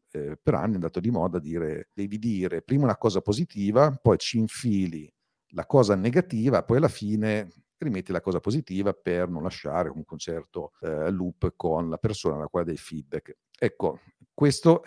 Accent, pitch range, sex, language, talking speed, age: native, 90-105 Hz, male, Italian, 180 wpm, 50-69